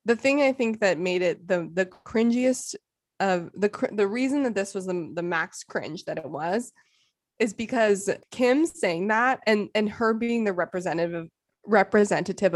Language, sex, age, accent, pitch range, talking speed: English, female, 20-39, American, 190-245 Hz, 175 wpm